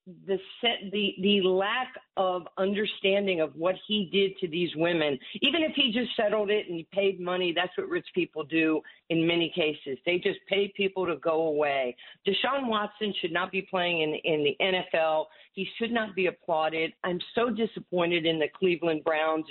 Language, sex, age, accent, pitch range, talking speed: English, female, 50-69, American, 165-210 Hz, 190 wpm